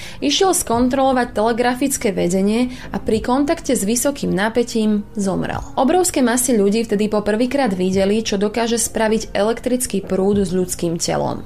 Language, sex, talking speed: Slovak, female, 130 wpm